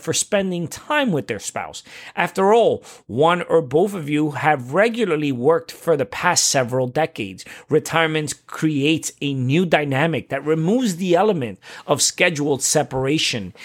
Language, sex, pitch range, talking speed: English, male, 135-185 Hz, 145 wpm